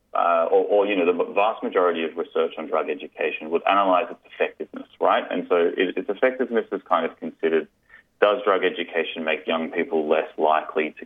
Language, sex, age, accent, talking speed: English, male, 30-49, Australian, 195 wpm